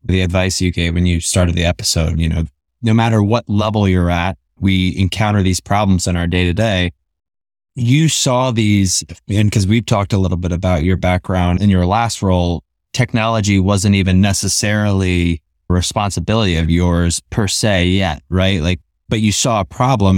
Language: English